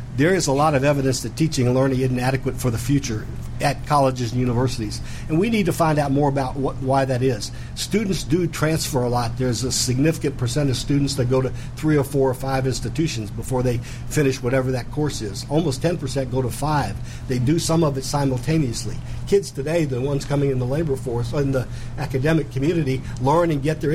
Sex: male